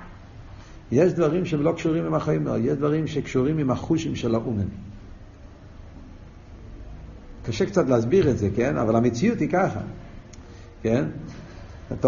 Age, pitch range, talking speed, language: 50-69, 105-155 Hz, 130 wpm, Hebrew